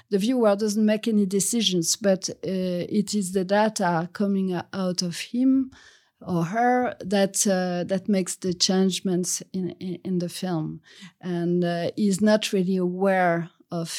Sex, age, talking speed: female, 40-59, 155 wpm